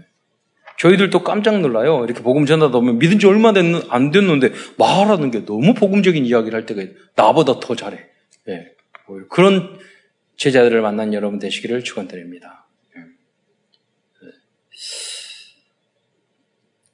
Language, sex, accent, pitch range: Korean, male, native, 125-195 Hz